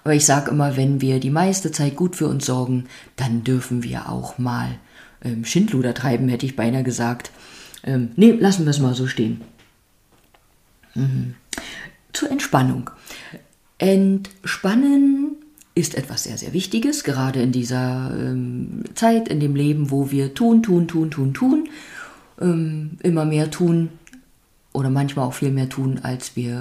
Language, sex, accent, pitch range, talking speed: German, female, German, 135-195 Hz, 155 wpm